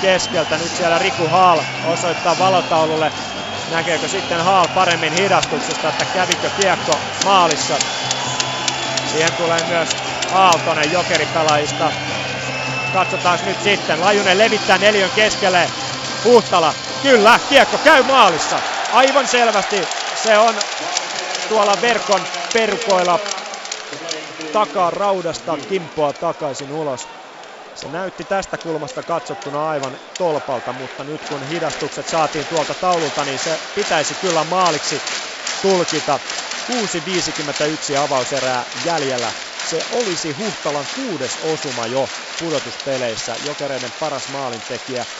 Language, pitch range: Finnish, 145-185 Hz